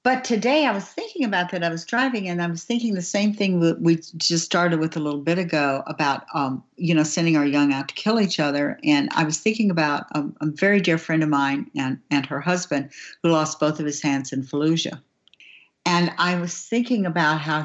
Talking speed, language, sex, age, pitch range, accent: 230 wpm, English, female, 60-79, 140-175 Hz, American